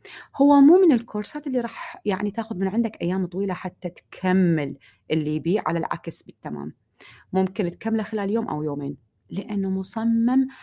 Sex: female